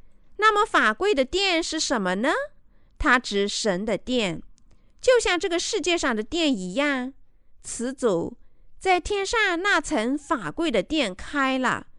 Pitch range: 235-335 Hz